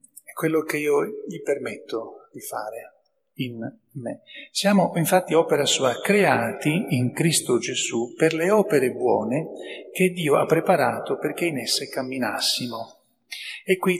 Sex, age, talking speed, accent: male, 40-59, 135 wpm, native